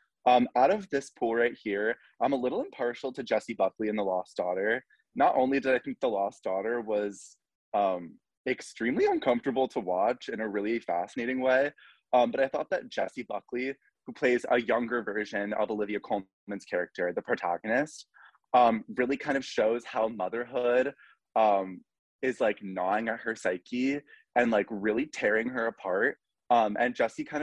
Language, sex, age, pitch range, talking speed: English, male, 20-39, 100-130 Hz, 175 wpm